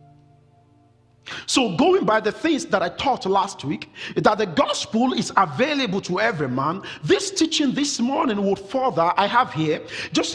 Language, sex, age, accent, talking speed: English, male, 50-69, Nigerian, 160 wpm